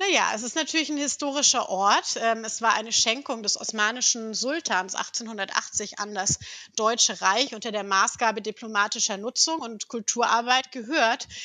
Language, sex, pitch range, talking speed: German, female, 210-235 Hz, 140 wpm